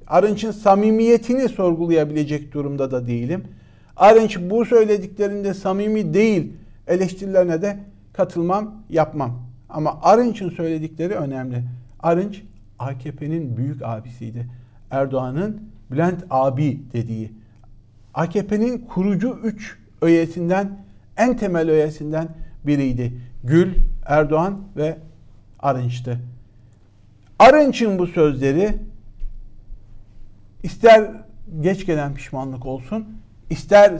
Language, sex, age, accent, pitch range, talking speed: Turkish, male, 50-69, native, 120-185 Hz, 85 wpm